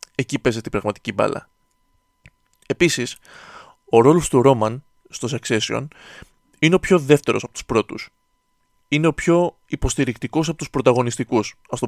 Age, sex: 20-39, male